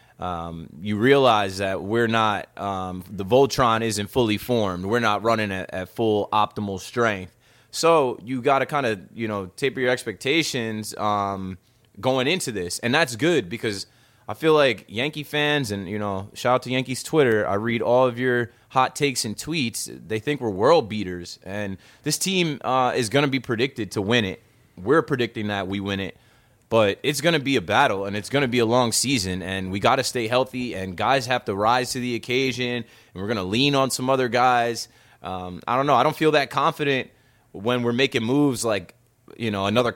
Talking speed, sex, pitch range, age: 210 wpm, male, 105-130 Hz, 20-39